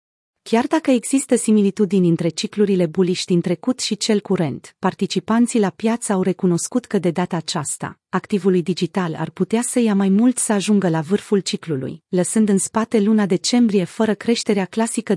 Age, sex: 30-49, female